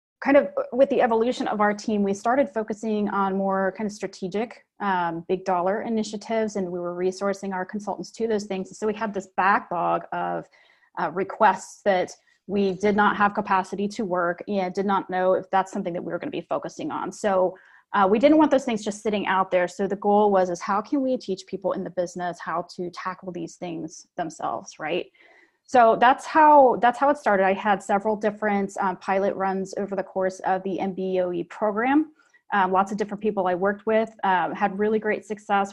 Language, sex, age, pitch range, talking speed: English, female, 30-49, 185-215 Hz, 210 wpm